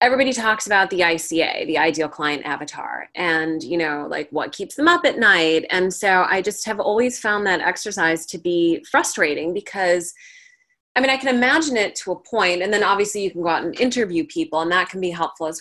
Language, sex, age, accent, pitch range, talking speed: English, female, 20-39, American, 175-245 Hz, 220 wpm